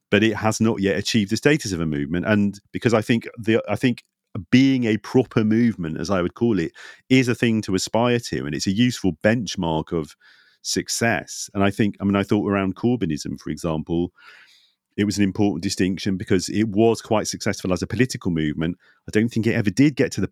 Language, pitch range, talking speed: English, 90-110 Hz, 220 wpm